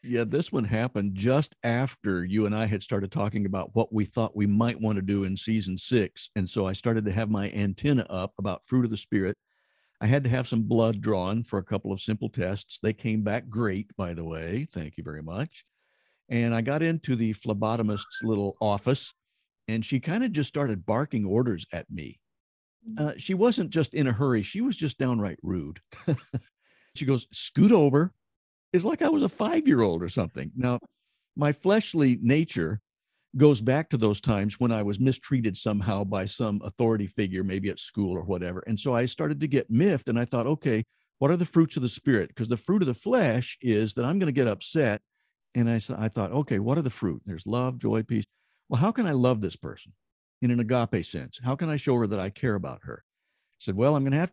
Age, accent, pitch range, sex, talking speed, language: 60-79, American, 105-135 Hz, male, 220 wpm, English